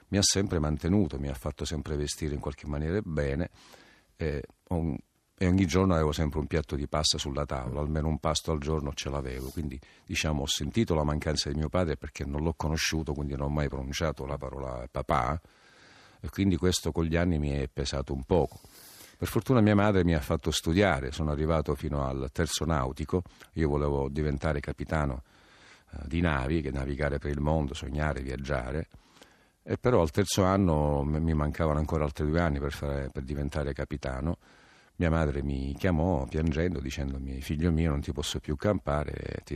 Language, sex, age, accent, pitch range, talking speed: Italian, male, 50-69, native, 70-85 Hz, 180 wpm